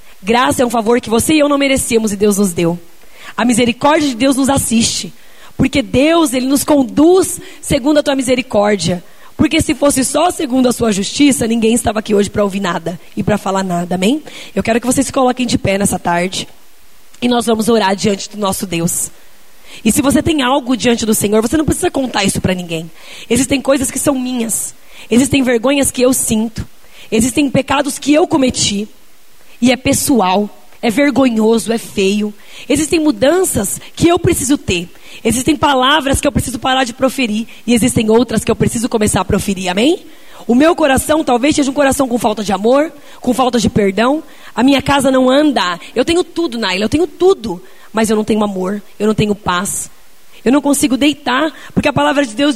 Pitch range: 215-285 Hz